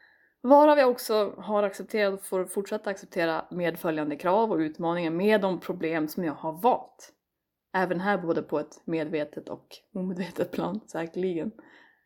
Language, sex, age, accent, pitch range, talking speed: Swedish, female, 20-39, native, 180-225 Hz, 150 wpm